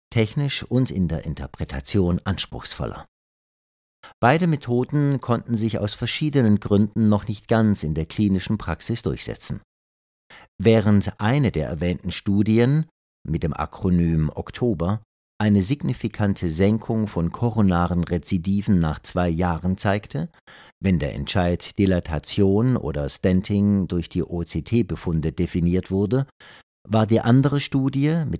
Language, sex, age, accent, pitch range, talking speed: German, male, 50-69, German, 85-115 Hz, 120 wpm